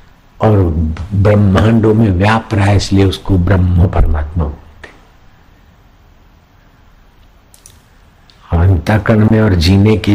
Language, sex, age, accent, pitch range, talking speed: Hindi, male, 60-79, native, 90-100 Hz, 90 wpm